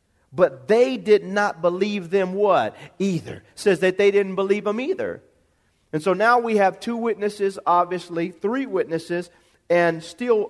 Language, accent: English, American